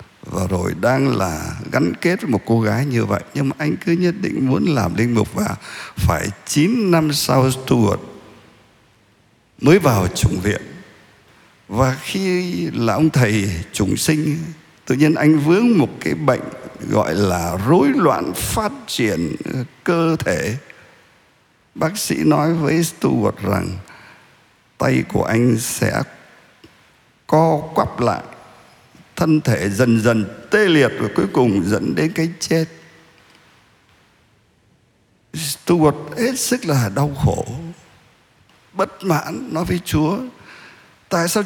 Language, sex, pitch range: Vietnamese, male, 115-170 Hz